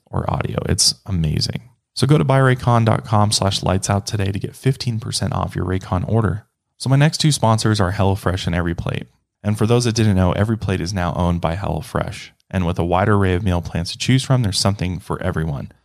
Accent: American